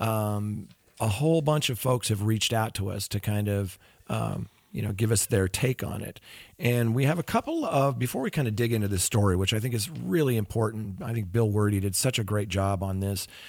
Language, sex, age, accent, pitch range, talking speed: English, male, 40-59, American, 100-125 Hz, 240 wpm